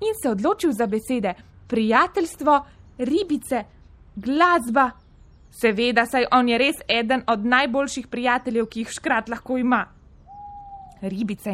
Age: 20-39